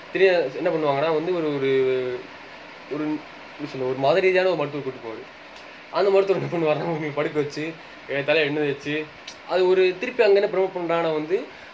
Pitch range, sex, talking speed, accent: 140-175 Hz, male, 165 wpm, native